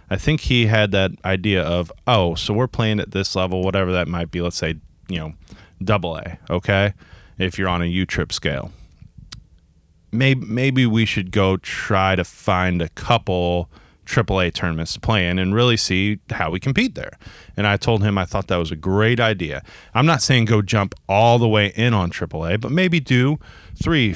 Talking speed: 200 wpm